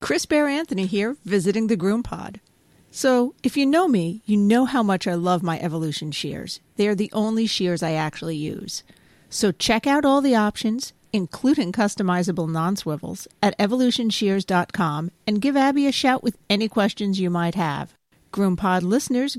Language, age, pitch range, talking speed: English, 40-59, 180-225 Hz, 160 wpm